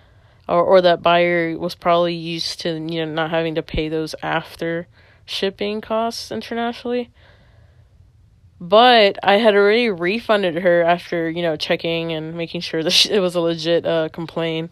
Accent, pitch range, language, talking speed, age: American, 155-180 Hz, English, 165 wpm, 20-39